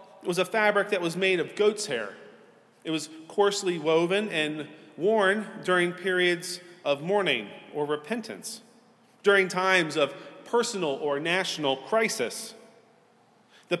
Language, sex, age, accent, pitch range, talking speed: English, male, 40-59, American, 160-205 Hz, 130 wpm